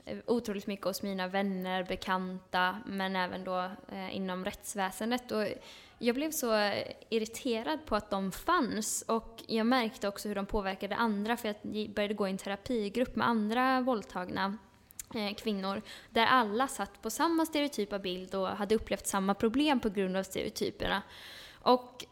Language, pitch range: Swedish, 195-235 Hz